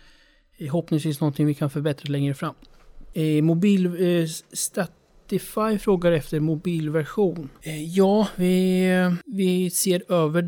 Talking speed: 125 wpm